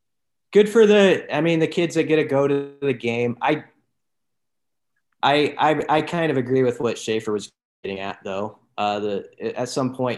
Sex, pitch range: male, 110-135 Hz